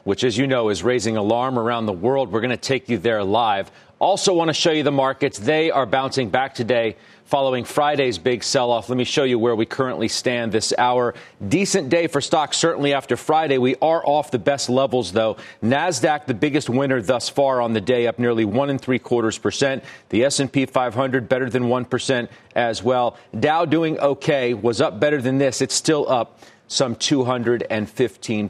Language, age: English, 40-59